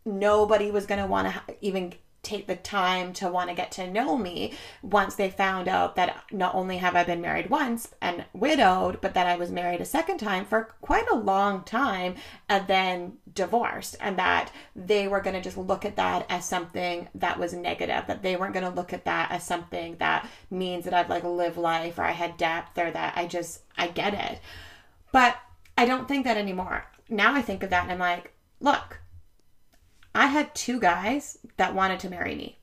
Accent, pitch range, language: American, 180-210 Hz, English